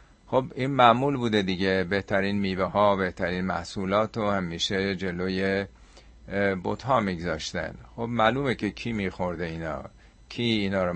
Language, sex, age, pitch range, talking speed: Persian, male, 50-69, 85-100 Hz, 130 wpm